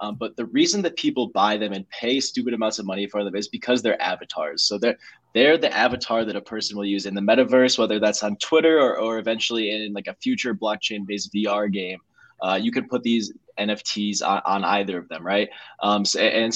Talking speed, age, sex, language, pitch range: 225 wpm, 20-39, male, English, 100-120 Hz